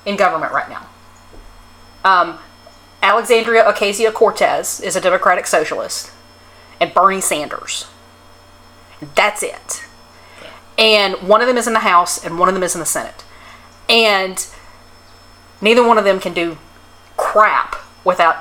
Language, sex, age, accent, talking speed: English, female, 40-59, American, 135 wpm